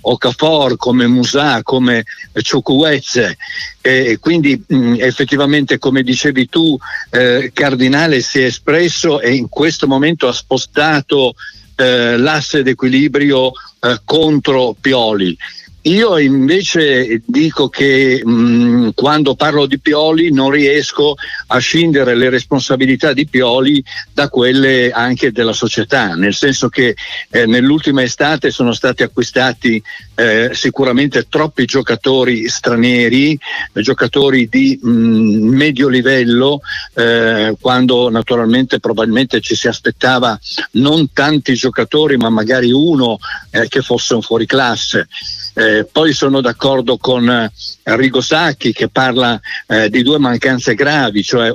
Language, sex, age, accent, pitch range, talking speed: Italian, male, 60-79, native, 120-140 Hz, 115 wpm